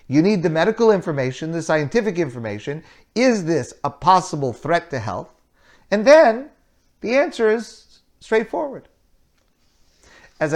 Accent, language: American, English